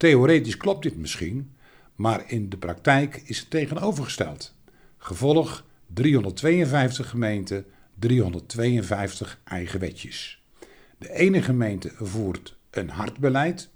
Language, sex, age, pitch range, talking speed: Dutch, male, 50-69, 100-140 Hz, 100 wpm